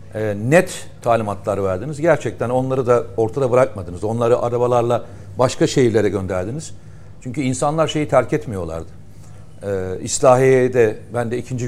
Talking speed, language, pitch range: 125 wpm, Turkish, 105-150 Hz